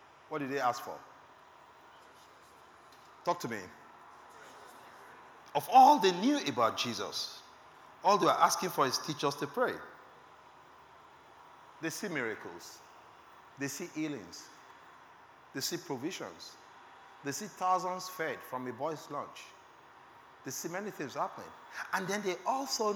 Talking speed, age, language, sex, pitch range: 130 wpm, 50-69, English, male, 130-175 Hz